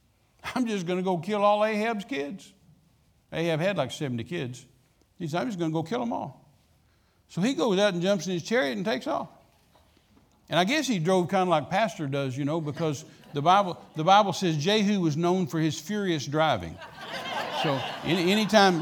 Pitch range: 175-235 Hz